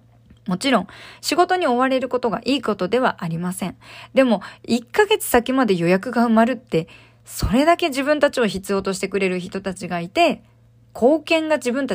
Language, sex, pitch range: Japanese, female, 180-250 Hz